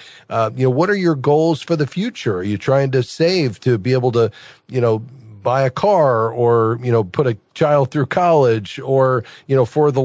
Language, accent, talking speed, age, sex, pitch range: English, American, 220 wpm, 40-59, male, 120-155 Hz